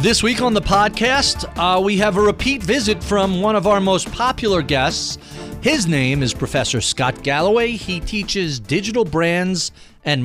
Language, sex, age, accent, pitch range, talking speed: English, male, 40-59, American, 120-180 Hz, 170 wpm